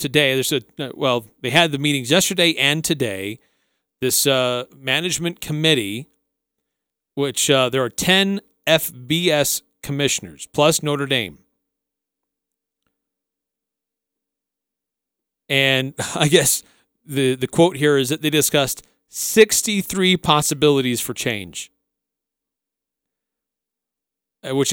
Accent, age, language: American, 40-59, English